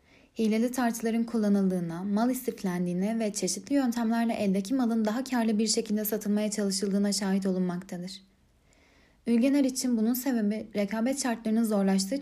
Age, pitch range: 10-29, 200-240 Hz